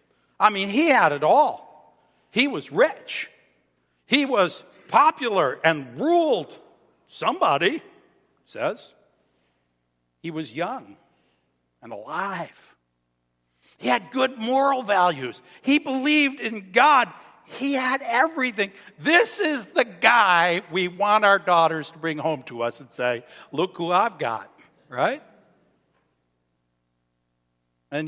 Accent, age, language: American, 60-79, English